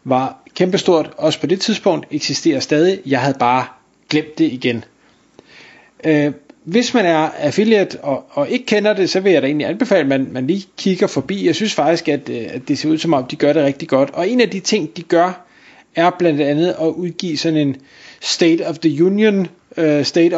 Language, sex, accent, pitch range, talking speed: Danish, male, native, 145-180 Hz, 195 wpm